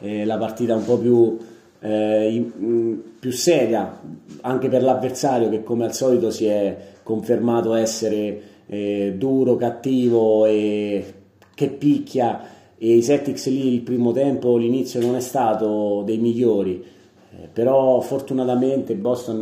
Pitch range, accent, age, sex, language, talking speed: 105-120 Hz, native, 30-49, male, Italian, 125 wpm